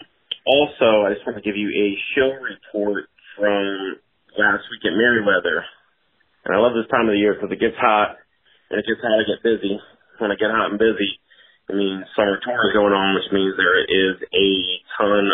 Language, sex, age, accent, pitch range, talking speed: English, male, 30-49, American, 100-110 Hz, 205 wpm